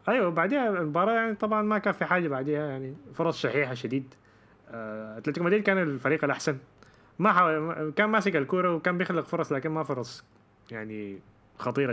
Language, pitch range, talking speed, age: Arabic, 115-150 Hz, 160 wpm, 20-39